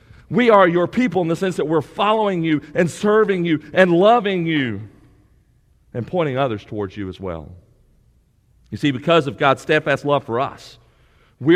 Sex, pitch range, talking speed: male, 115-160 Hz, 175 wpm